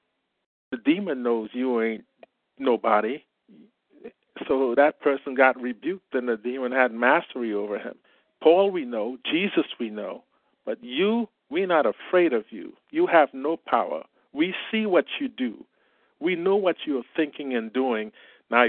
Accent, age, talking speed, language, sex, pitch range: American, 50-69, 150 wpm, English, male, 120-180 Hz